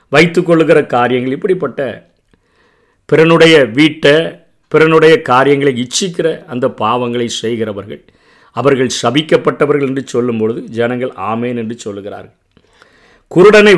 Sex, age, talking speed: male, 50-69, 95 wpm